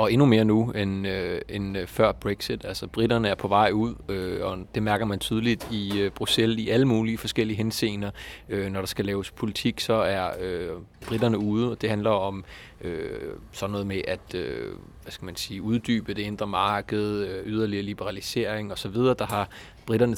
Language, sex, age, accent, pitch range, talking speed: Danish, male, 30-49, native, 100-115 Hz, 190 wpm